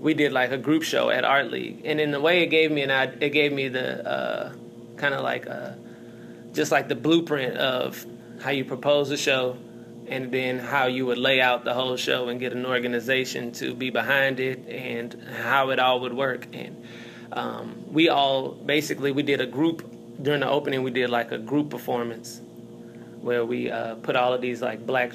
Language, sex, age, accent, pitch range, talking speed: English, male, 20-39, American, 120-140 Hz, 210 wpm